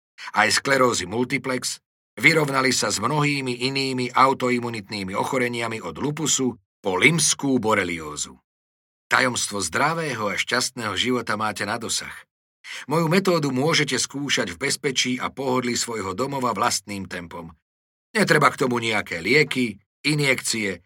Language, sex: Slovak, male